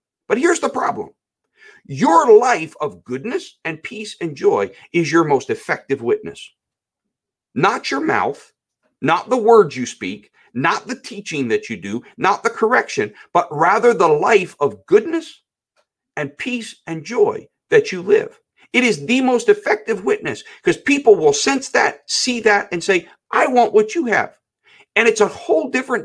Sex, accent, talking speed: male, American, 165 wpm